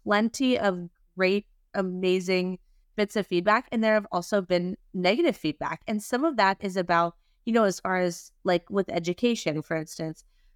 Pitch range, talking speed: 175-220 Hz, 170 wpm